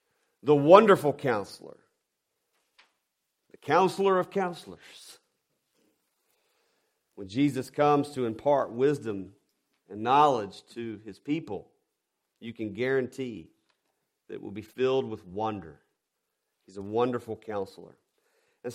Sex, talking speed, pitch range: male, 105 wpm, 120-175 Hz